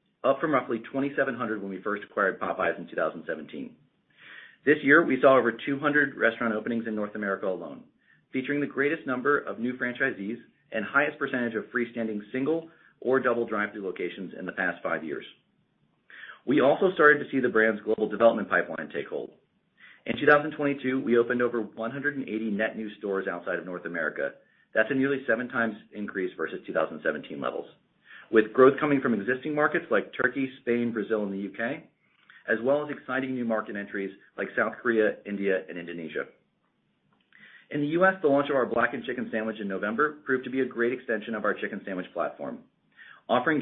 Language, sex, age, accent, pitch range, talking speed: English, male, 40-59, American, 110-140 Hz, 175 wpm